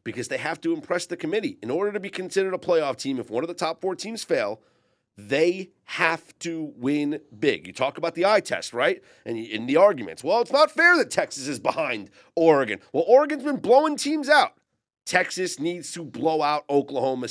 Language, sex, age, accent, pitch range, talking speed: English, male, 40-59, American, 120-185 Hz, 210 wpm